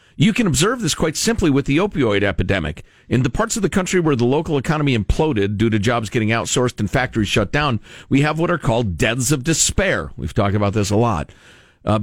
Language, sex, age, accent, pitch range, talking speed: English, male, 50-69, American, 110-160 Hz, 225 wpm